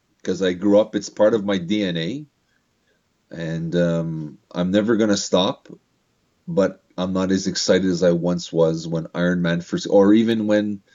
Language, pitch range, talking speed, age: English, 90-115 Hz, 175 wpm, 30-49